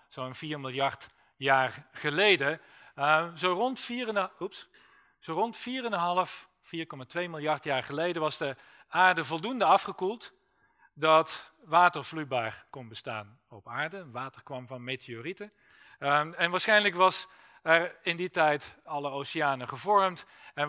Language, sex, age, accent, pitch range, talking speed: Dutch, male, 40-59, Dutch, 130-175 Hz, 135 wpm